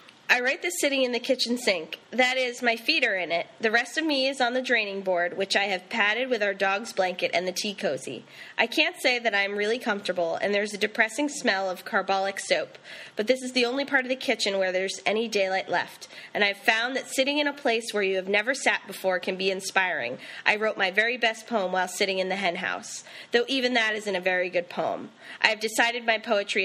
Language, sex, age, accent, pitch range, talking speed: English, female, 20-39, American, 185-235 Hz, 240 wpm